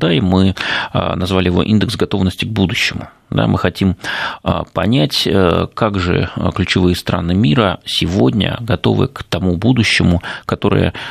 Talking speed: 130 wpm